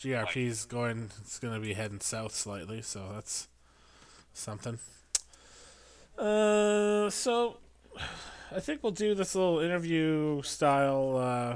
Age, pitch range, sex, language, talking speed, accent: 20-39, 105-140 Hz, male, English, 110 wpm, American